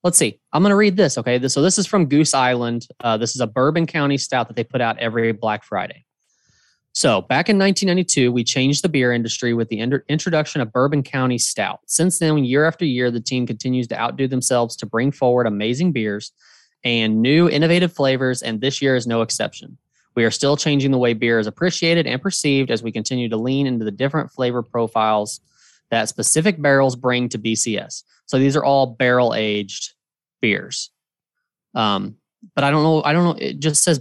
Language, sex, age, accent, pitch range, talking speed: English, male, 20-39, American, 115-150 Hz, 205 wpm